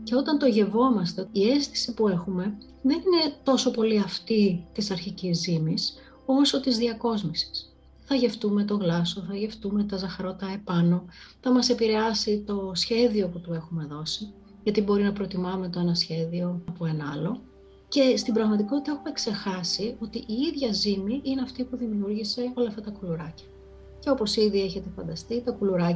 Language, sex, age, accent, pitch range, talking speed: Greek, female, 30-49, native, 185-240 Hz, 135 wpm